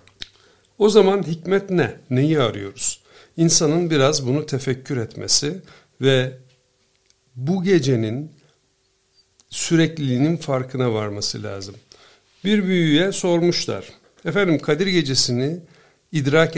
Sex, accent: male, native